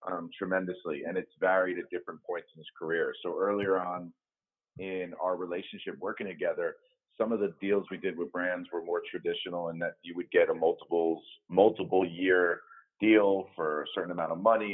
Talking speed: 185 wpm